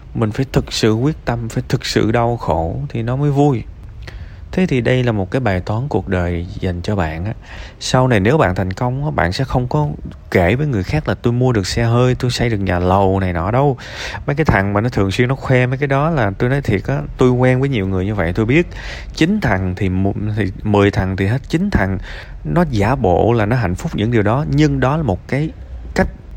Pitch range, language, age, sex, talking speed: 90-130 Hz, Vietnamese, 20-39, male, 245 wpm